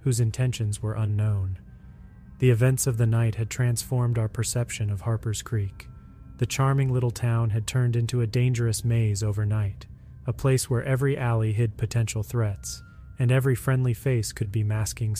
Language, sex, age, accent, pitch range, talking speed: English, male, 30-49, American, 110-125 Hz, 165 wpm